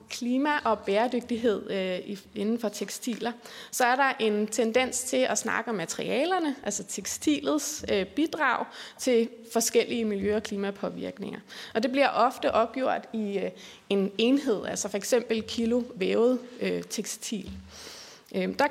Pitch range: 210-255 Hz